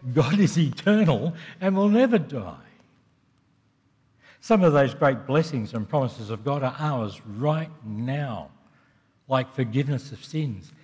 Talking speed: 135 wpm